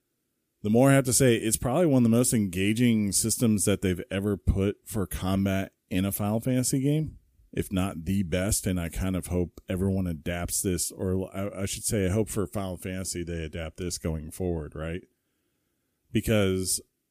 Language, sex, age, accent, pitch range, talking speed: English, male, 40-59, American, 90-110 Hz, 190 wpm